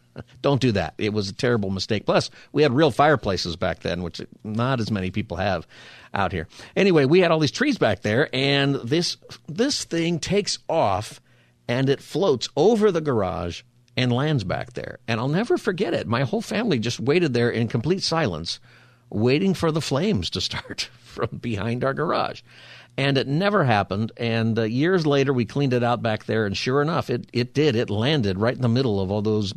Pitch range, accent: 105-140 Hz, American